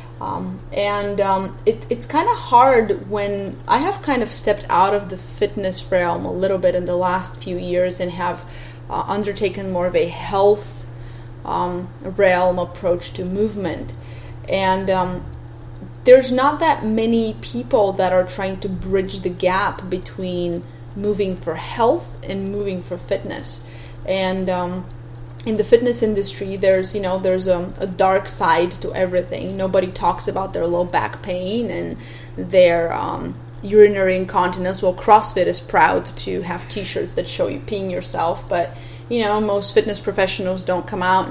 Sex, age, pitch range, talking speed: female, 30-49, 175-195 Hz, 160 wpm